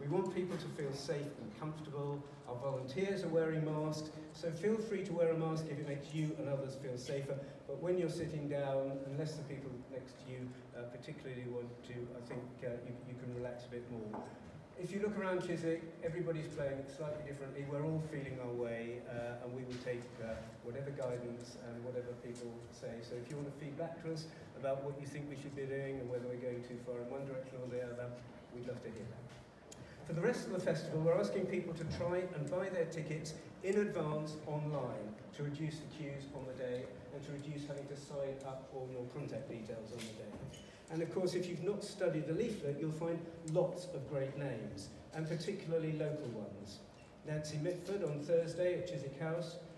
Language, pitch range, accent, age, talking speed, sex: English, 130-165 Hz, British, 50-69, 215 wpm, male